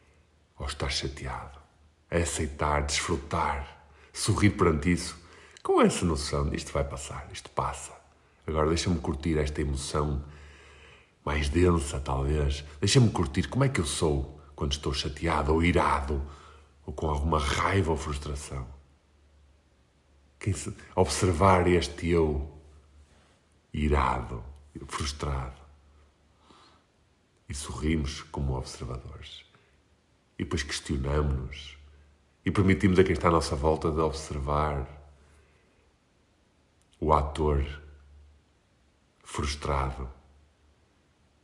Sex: male